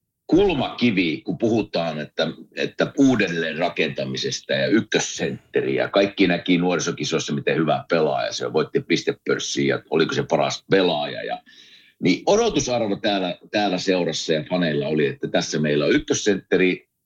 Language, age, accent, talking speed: Finnish, 50-69, native, 125 wpm